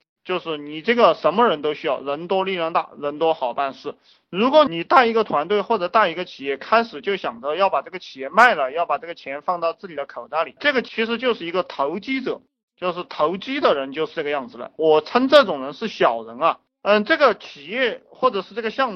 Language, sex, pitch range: Chinese, male, 155-225 Hz